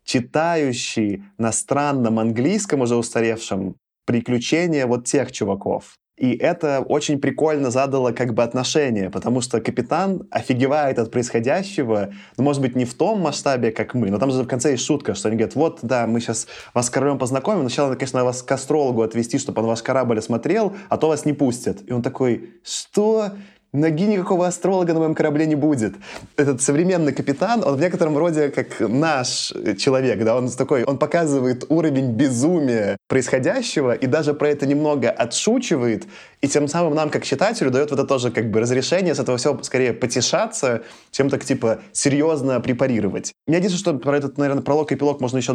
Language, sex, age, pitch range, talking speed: Russian, male, 20-39, 120-150 Hz, 180 wpm